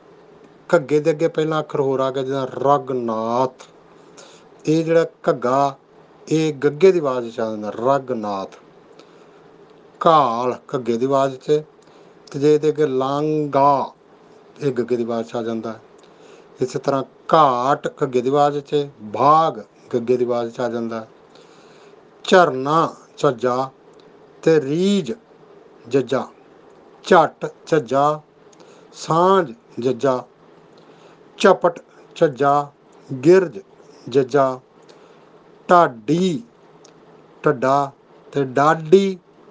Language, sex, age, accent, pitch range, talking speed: English, male, 50-69, Indian, 130-155 Hz, 45 wpm